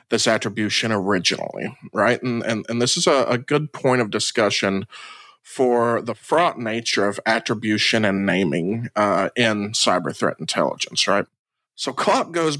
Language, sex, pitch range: English, male, 105-125 Hz